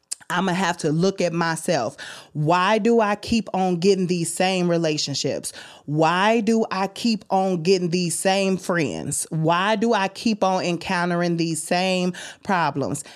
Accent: American